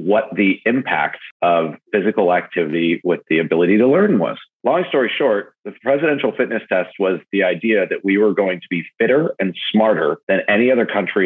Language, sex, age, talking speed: English, male, 40-59, 185 wpm